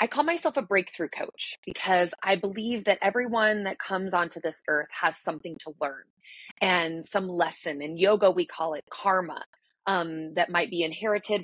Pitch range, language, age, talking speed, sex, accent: 170-210 Hz, English, 30-49, 180 wpm, female, American